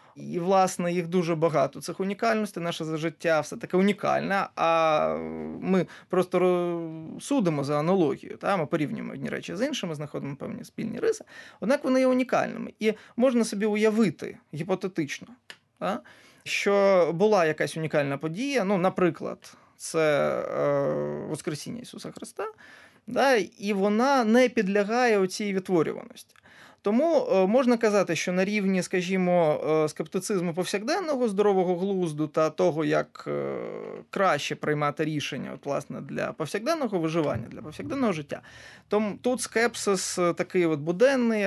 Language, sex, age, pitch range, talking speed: Ukrainian, male, 20-39, 160-215 Hz, 125 wpm